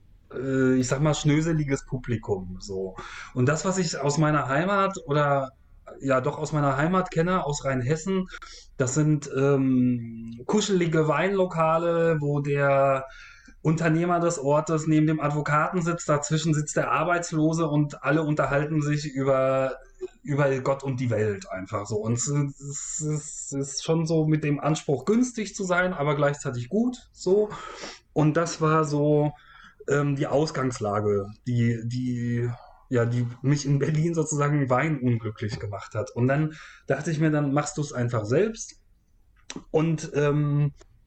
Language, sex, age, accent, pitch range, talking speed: German, male, 30-49, German, 135-160 Hz, 140 wpm